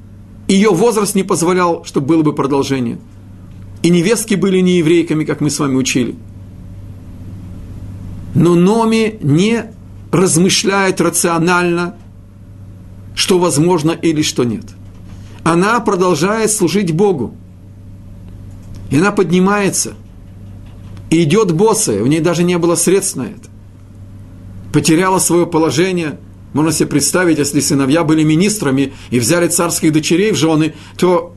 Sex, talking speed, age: male, 120 wpm, 50-69